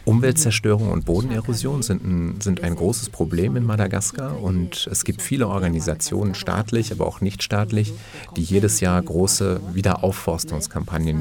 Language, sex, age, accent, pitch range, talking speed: German, male, 40-59, German, 85-115 Hz, 140 wpm